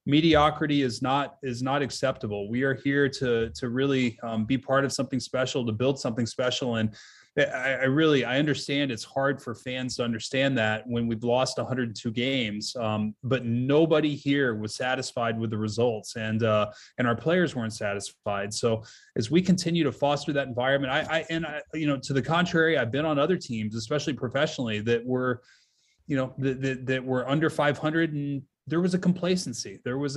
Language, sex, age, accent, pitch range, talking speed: English, male, 20-39, American, 120-145 Hz, 195 wpm